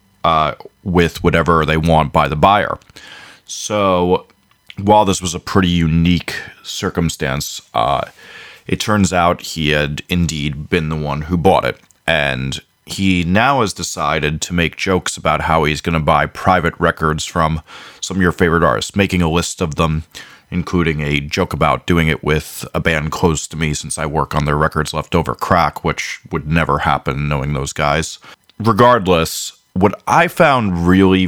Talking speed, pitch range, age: 170 wpm, 75-90 Hz, 30-49